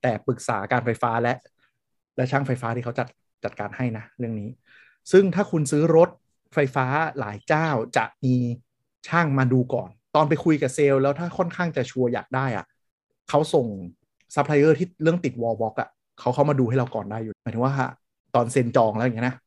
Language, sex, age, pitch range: Thai, male, 20-39, 115-140 Hz